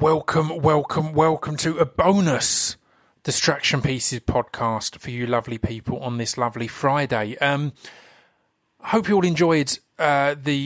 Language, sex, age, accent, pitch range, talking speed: English, male, 30-49, British, 125-160 Hz, 140 wpm